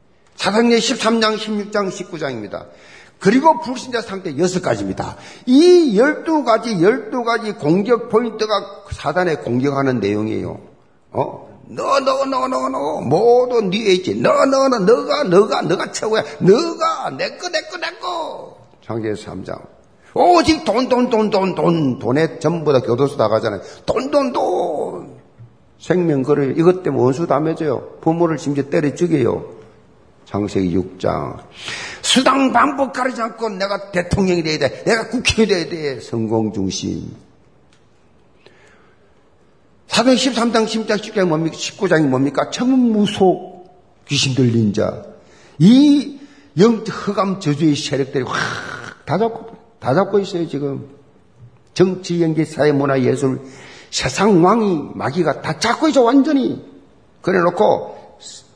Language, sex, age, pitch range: Korean, male, 50-69, 145-235 Hz